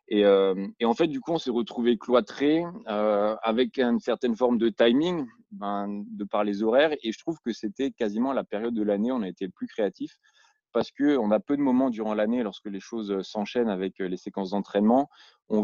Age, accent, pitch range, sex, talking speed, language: 20-39, French, 105-125 Hz, male, 225 wpm, French